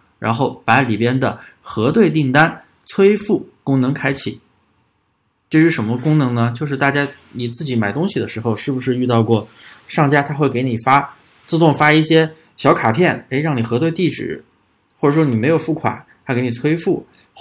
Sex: male